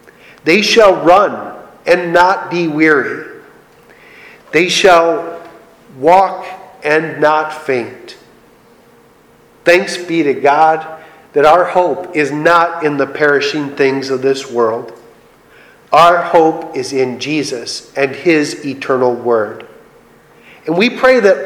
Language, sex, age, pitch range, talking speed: English, male, 40-59, 145-195 Hz, 115 wpm